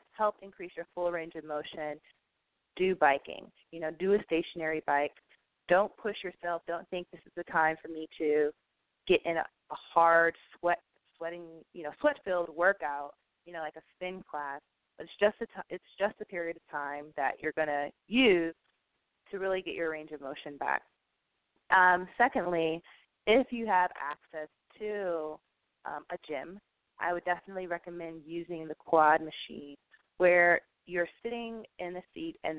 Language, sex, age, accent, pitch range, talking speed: English, female, 20-39, American, 155-180 Hz, 170 wpm